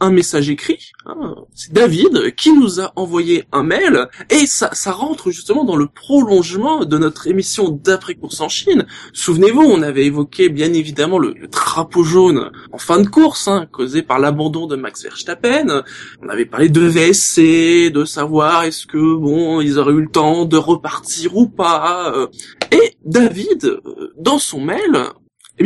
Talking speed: 170 wpm